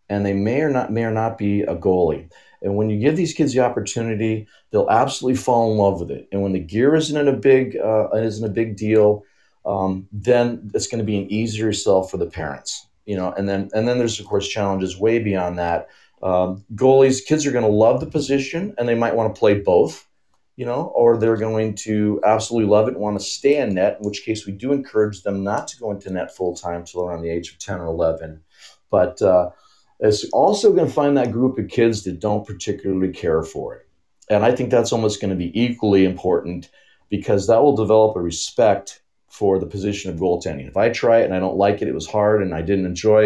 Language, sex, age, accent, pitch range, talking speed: English, male, 40-59, American, 95-115 Hz, 235 wpm